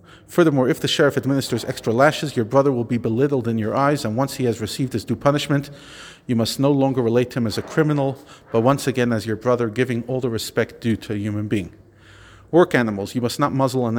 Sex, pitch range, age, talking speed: male, 110-130 Hz, 40-59, 235 wpm